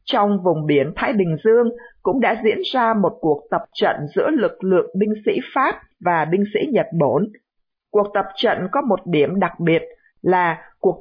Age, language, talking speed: 50-69, Vietnamese, 190 wpm